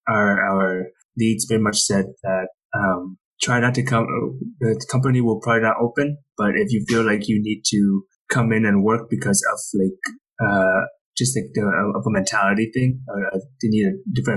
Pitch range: 100-130 Hz